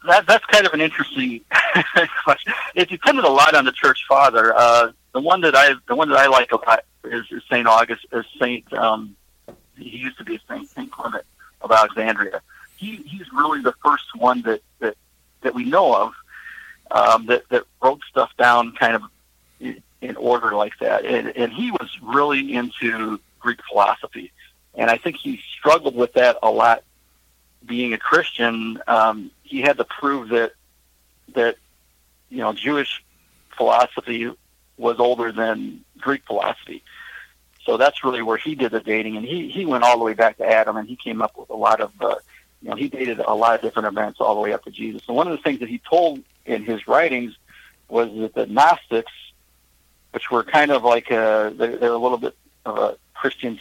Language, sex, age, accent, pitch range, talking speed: English, male, 50-69, American, 110-140 Hz, 195 wpm